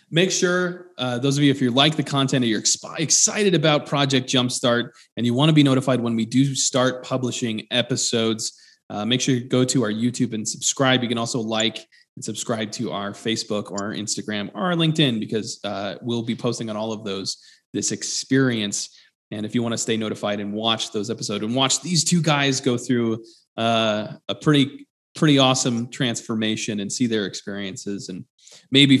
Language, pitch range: English, 110-140 Hz